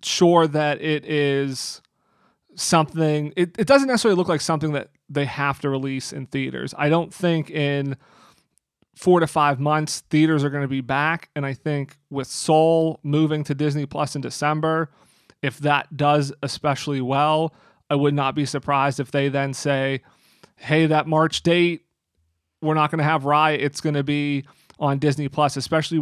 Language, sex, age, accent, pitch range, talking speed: English, male, 30-49, American, 140-155 Hz, 175 wpm